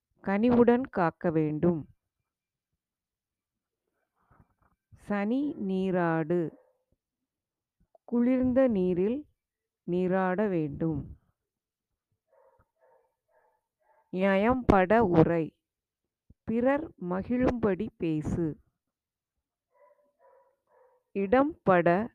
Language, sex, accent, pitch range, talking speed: Tamil, female, native, 160-235 Hz, 40 wpm